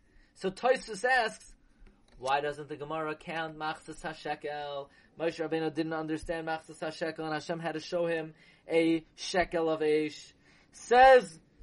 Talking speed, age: 140 wpm, 30-49